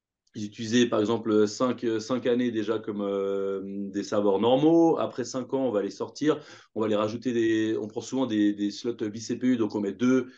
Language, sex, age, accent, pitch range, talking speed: French, male, 30-49, French, 110-140 Hz, 200 wpm